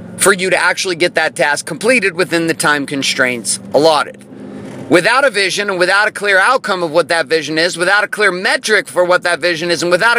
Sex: male